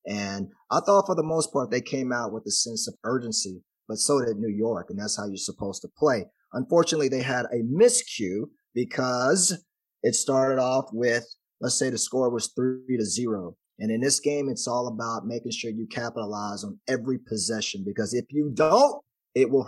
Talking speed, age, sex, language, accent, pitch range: 200 wpm, 30-49, male, English, American, 115-145 Hz